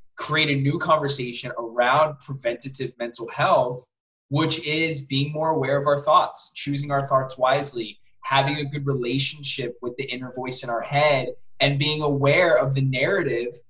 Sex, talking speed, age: male, 160 wpm, 20-39